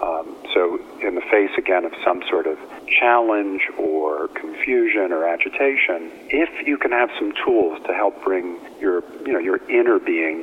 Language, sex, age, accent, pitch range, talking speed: English, male, 50-69, American, 310-385 Hz, 175 wpm